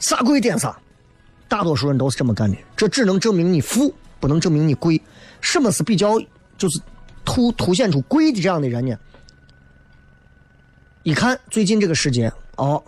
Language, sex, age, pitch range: Chinese, male, 30-49, 130-190 Hz